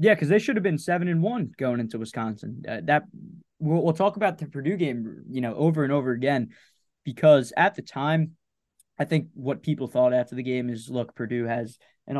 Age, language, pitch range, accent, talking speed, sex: 20-39, English, 125-160 Hz, American, 215 wpm, male